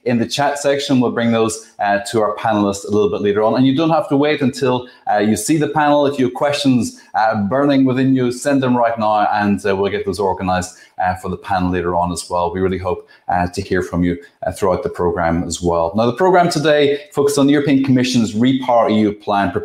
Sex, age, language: male, 20-39, English